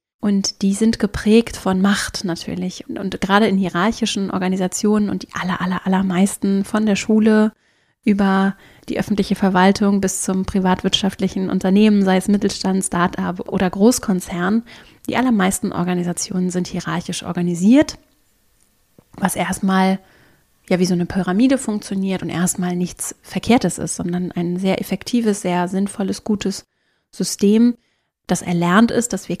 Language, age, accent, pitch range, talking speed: German, 30-49, German, 180-215 Hz, 135 wpm